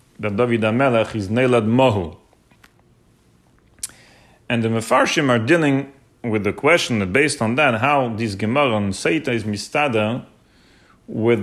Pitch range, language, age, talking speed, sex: 110-140 Hz, English, 40-59, 135 wpm, male